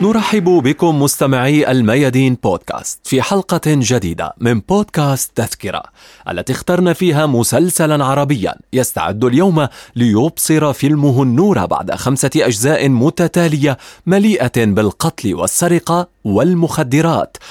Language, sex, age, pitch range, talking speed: Arabic, male, 30-49, 120-170 Hz, 100 wpm